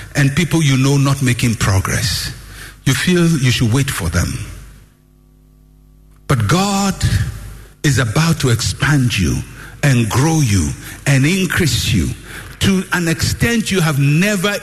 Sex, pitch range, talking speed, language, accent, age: male, 120-180 Hz, 135 wpm, English, Nigerian, 60-79